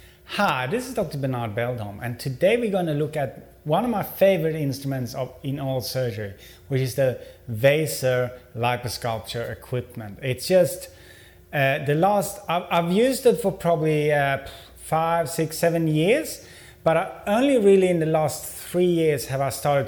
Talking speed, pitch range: 165 wpm, 125-160 Hz